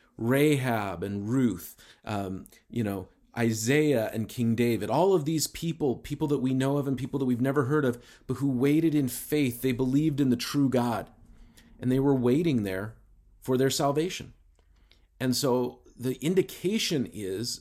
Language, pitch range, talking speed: English, 115-150 Hz, 170 wpm